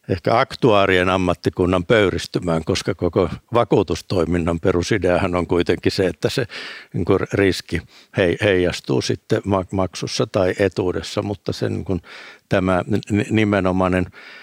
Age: 60-79